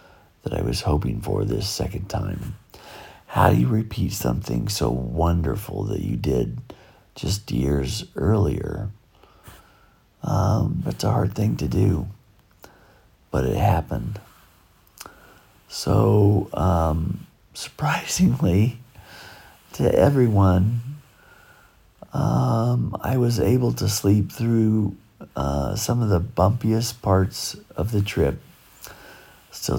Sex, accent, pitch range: male, American, 85-105 Hz